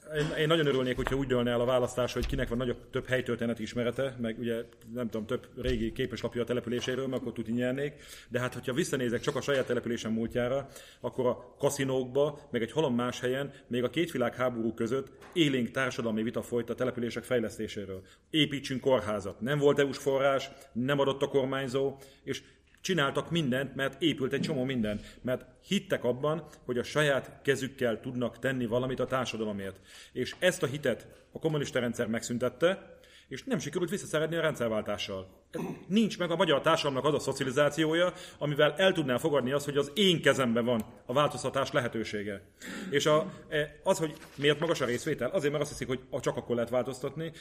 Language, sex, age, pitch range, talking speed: Hungarian, male, 40-59, 120-145 Hz, 180 wpm